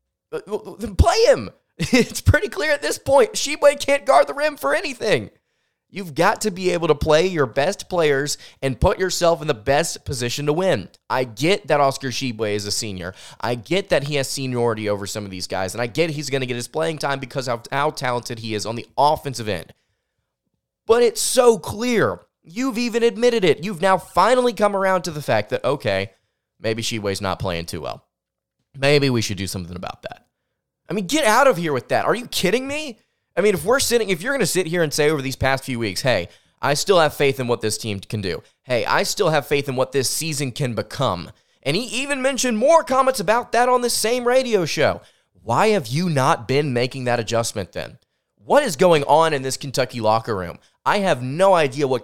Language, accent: English, American